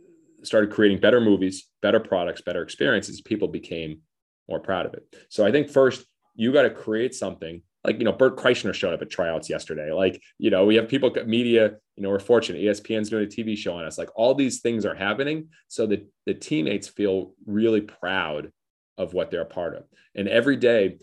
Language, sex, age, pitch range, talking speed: English, male, 30-49, 95-110 Hz, 210 wpm